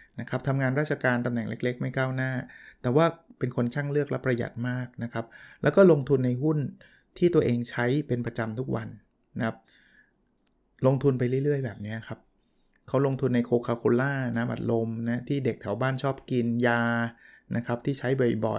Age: 20-39